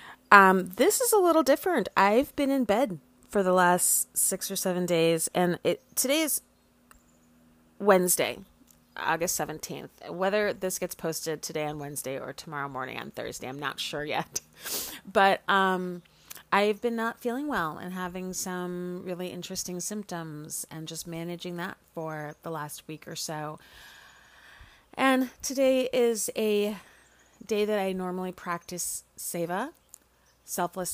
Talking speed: 145 wpm